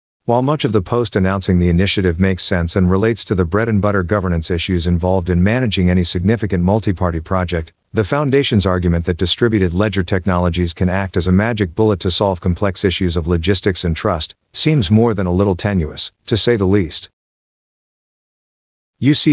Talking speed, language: 175 wpm, English